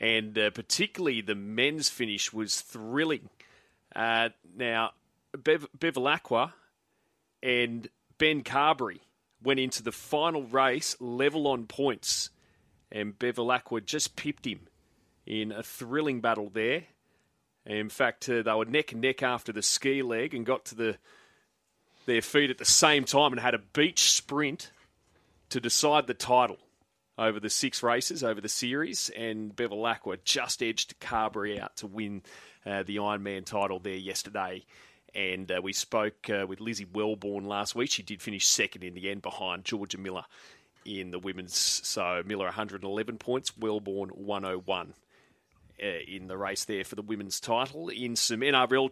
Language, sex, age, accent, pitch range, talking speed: English, male, 30-49, Australian, 100-130 Hz, 155 wpm